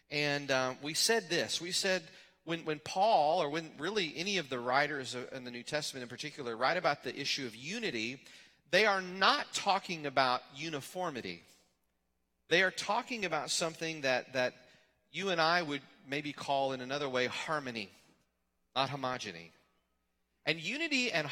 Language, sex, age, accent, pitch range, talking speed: English, male, 40-59, American, 125-175 Hz, 165 wpm